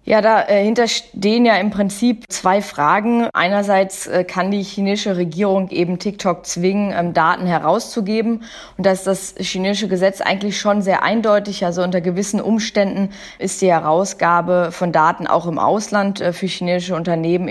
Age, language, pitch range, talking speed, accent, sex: 20-39, German, 170-200 Hz, 145 wpm, German, female